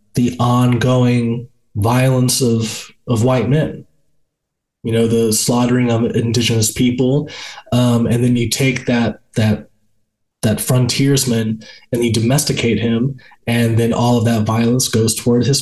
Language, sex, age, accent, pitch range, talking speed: English, male, 20-39, American, 110-125 Hz, 140 wpm